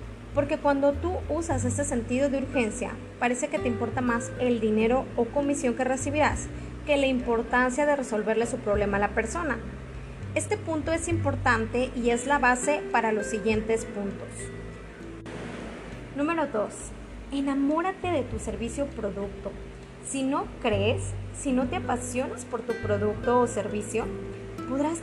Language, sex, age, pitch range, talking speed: Spanish, female, 20-39, 215-285 Hz, 150 wpm